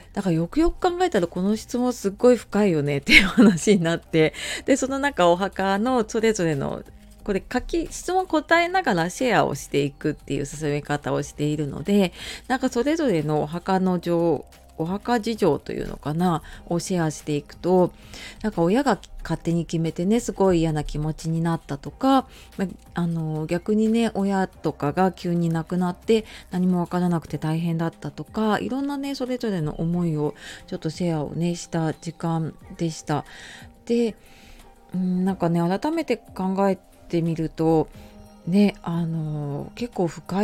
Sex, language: female, Japanese